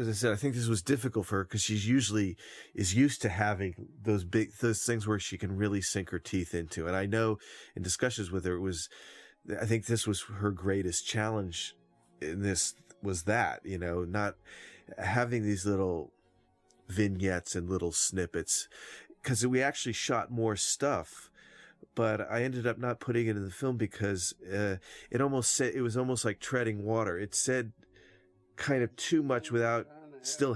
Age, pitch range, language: 30-49, 95-115 Hz, English